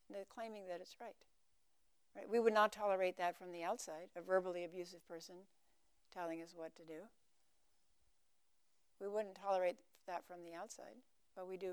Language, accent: English, American